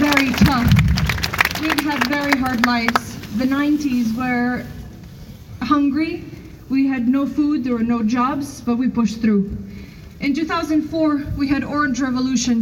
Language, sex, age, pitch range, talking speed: English, female, 30-49, 220-275 Hz, 145 wpm